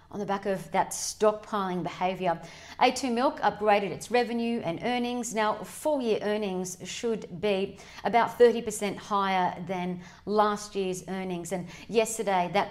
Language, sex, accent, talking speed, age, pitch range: English, female, Australian, 135 wpm, 40-59, 200-235 Hz